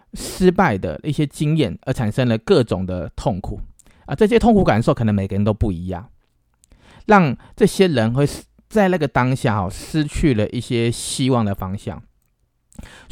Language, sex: Chinese, male